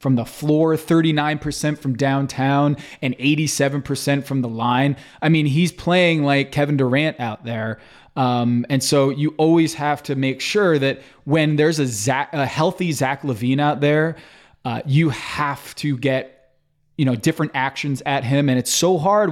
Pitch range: 135-155 Hz